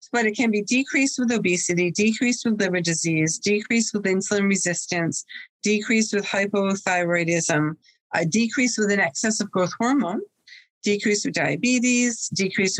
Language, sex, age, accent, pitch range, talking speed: English, female, 50-69, American, 180-230 Hz, 135 wpm